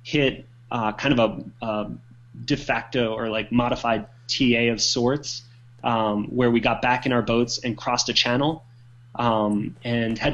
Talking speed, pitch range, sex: 170 wpm, 120-140 Hz, male